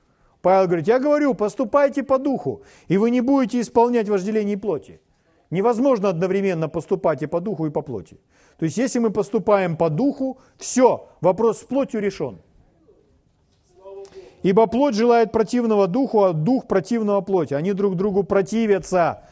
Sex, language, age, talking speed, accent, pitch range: male, Russian, 40-59, 150 wpm, native, 155-215 Hz